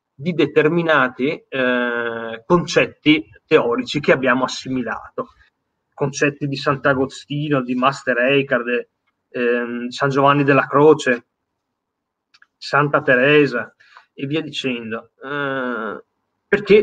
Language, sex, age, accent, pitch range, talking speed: Italian, male, 30-49, native, 125-155 Hz, 95 wpm